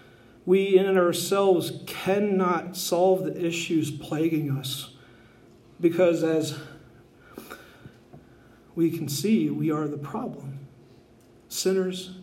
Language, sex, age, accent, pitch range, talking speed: English, male, 40-59, American, 150-185 Hz, 95 wpm